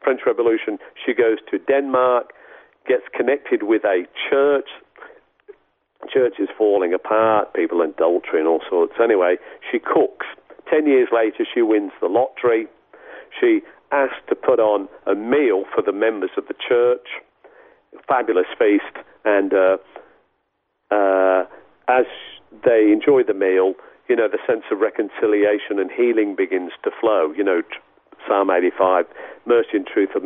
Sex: male